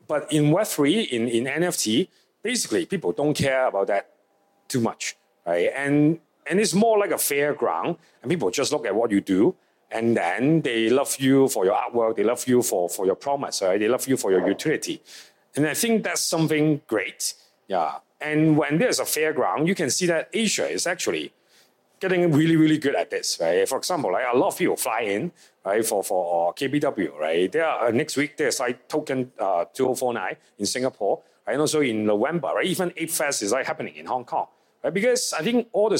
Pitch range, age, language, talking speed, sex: 130-175 Hz, 40-59, English, 210 wpm, male